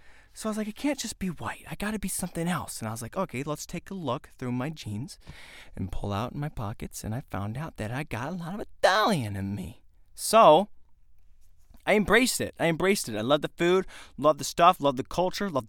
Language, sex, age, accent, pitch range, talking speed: English, male, 20-39, American, 115-160 Hz, 235 wpm